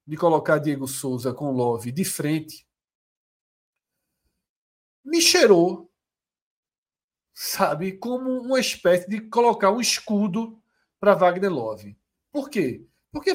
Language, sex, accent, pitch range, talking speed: Portuguese, male, Brazilian, 155-210 Hz, 110 wpm